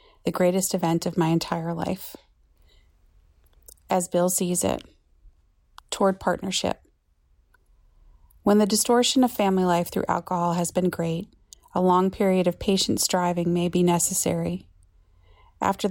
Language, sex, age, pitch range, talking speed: English, female, 30-49, 170-195 Hz, 130 wpm